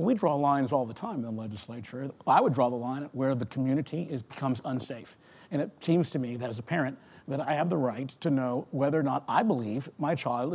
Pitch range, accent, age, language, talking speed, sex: 125-160 Hz, American, 50-69, English, 245 wpm, male